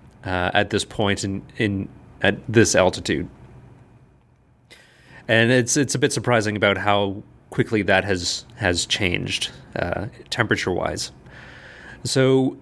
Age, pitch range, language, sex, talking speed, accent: 30-49, 100-120 Hz, English, male, 125 wpm, American